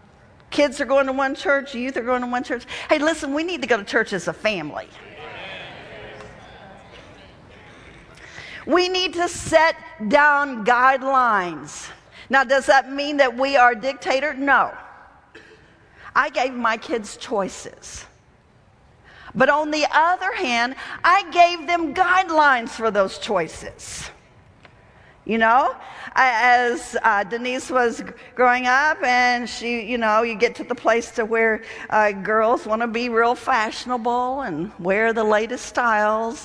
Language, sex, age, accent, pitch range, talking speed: English, female, 50-69, American, 220-295 Hz, 145 wpm